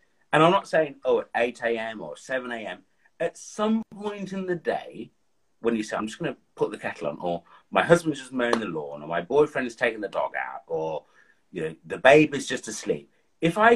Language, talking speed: English, 225 wpm